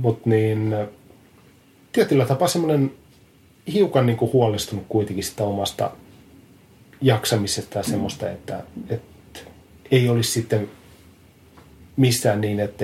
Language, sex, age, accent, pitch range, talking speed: Finnish, male, 30-49, native, 105-130 Hz, 105 wpm